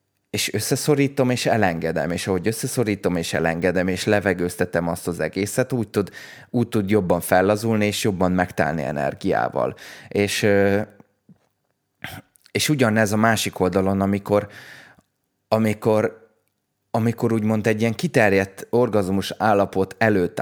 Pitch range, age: 95-115 Hz, 20-39